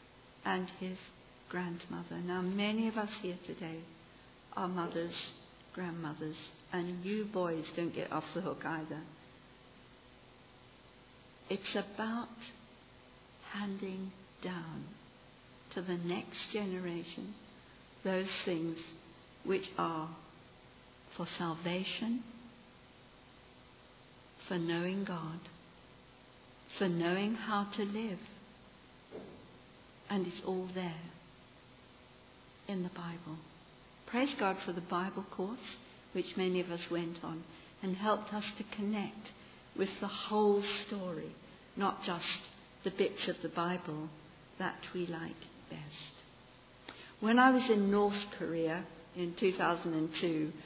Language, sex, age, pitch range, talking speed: English, female, 60-79, 165-200 Hz, 105 wpm